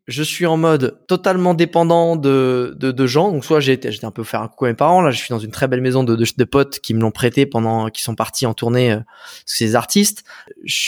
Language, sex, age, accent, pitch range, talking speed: French, male, 20-39, French, 125-160 Hz, 265 wpm